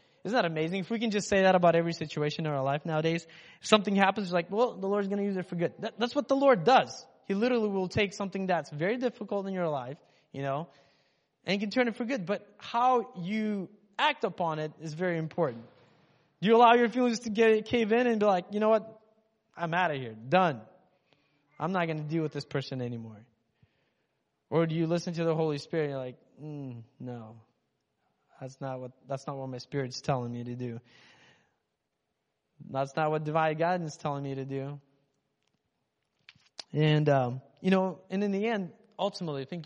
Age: 20-39